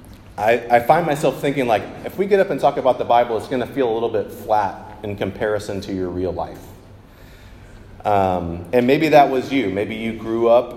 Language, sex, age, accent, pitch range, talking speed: English, male, 30-49, American, 100-120 Hz, 215 wpm